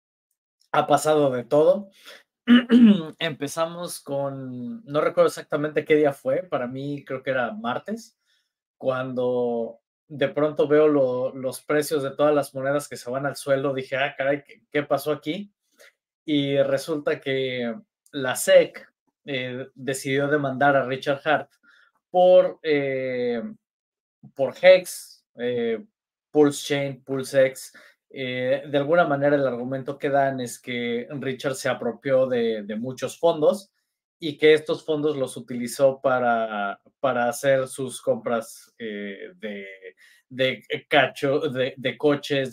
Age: 20-39